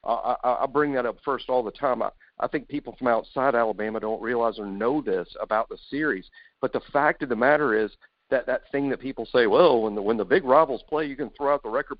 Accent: American